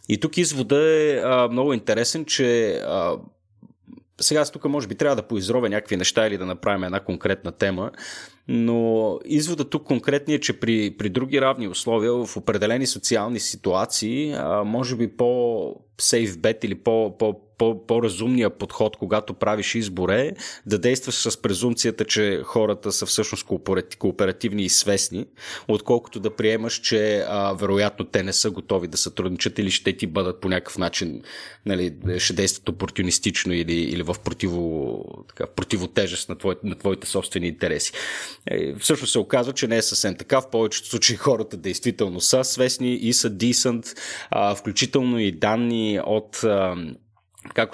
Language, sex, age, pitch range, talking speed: Bulgarian, male, 30-49, 100-120 Hz, 145 wpm